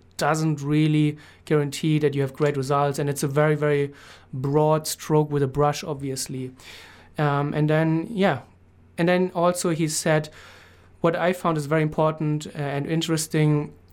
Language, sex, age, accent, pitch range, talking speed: English, male, 30-49, German, 140-170 Hz, 155 wpm